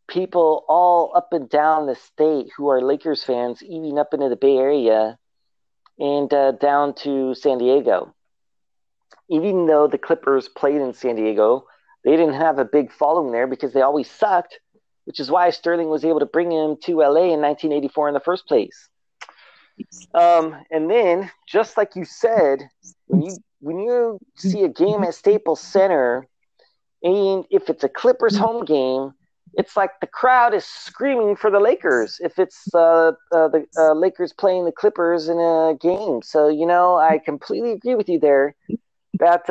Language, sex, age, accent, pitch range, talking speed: English, male, 40-59, American, 145-190 Hz, 175 wpm